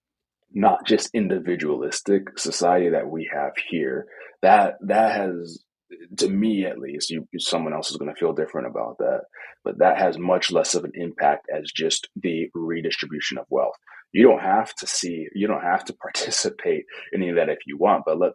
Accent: American